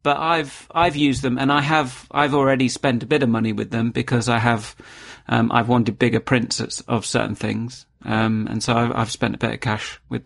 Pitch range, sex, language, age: 110-125 Hz, male, English, 30-49